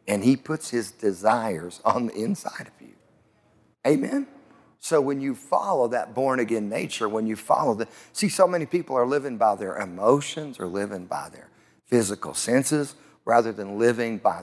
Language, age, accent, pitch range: English, 50-69, American, 110-155 Hz